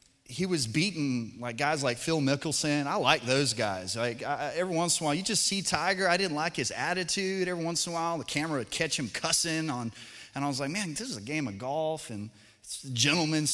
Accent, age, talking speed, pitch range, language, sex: American, 30-49, 245 wpm, 110-150 Hz, English, male